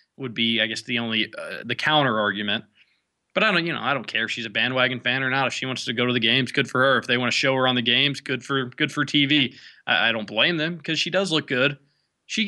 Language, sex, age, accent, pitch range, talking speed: English, male, 20-39, American, 125-160 Hz, 295 wpm